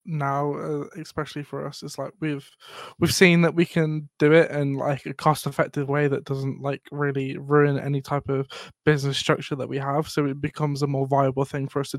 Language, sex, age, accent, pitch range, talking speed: English, male, 20-39, British, 140-160 Hz, 215 wpm